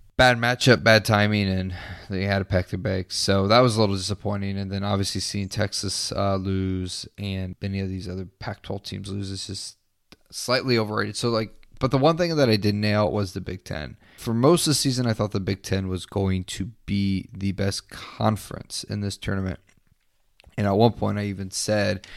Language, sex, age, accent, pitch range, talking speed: English, male, 20-39, American, 95-110 Hz, 210 wpm